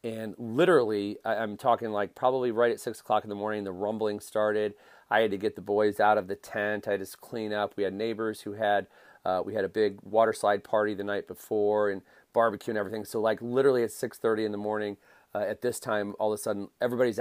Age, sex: 40-59, male